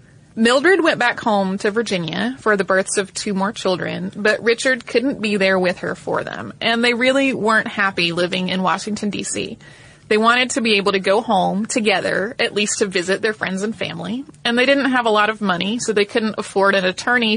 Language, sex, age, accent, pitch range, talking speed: English, female, 20-39, American, 190-230 Hz, 215 wpm